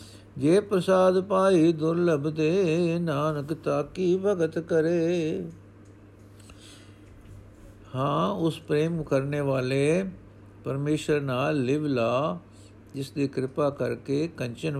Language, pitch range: Punjabi, 105-155 Hz